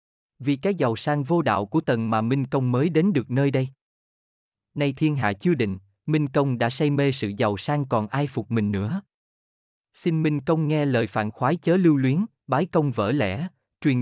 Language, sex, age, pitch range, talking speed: Vietnamese, male, 20-39, 110-155 Hz, 210 wpm